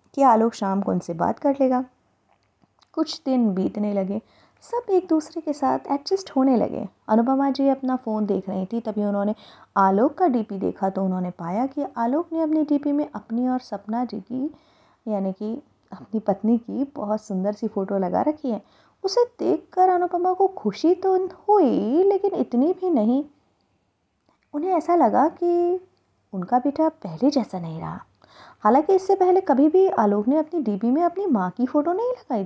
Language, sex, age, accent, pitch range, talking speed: Hindi, female, 20-39, native, 215-320 Hz, 180 wpm